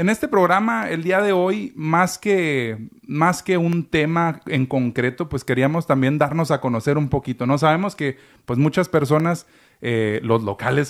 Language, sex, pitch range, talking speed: Spanish, male, 125-155 Hz, 175 wpm